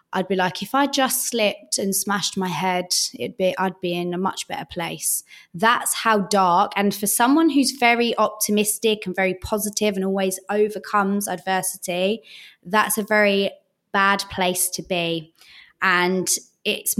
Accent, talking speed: British, 160 wpm